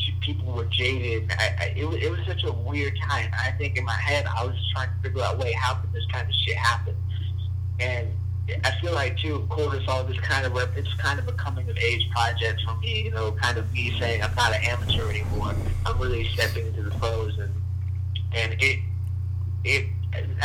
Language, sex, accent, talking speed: English, male, American, 210 wpm